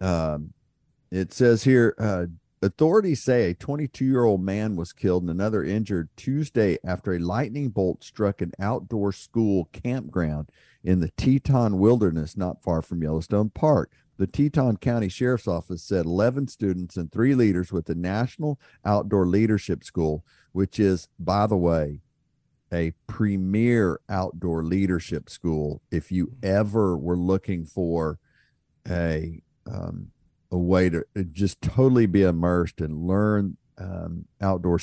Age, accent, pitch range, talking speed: 50-69, American, 90-115 Hz, 140 wpm